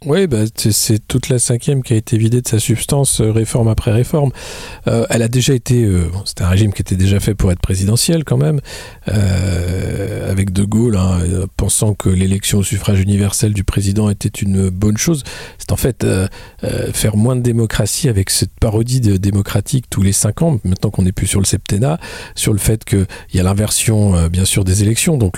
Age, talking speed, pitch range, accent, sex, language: 40-59, 210 wpm, 100-120 Hz, French, male, French